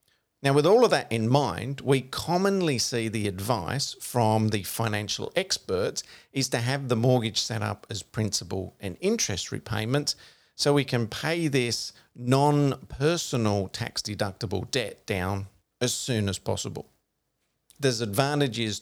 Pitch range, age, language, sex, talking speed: 100-130 Hz, 40-59, English, male, 135 wpm